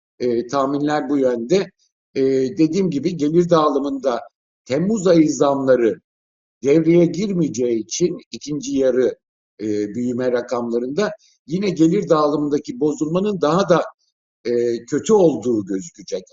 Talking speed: 110 wpm